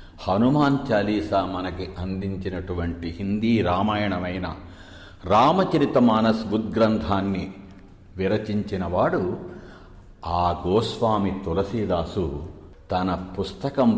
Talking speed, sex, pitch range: 65 wpm, male, 90-110 Hz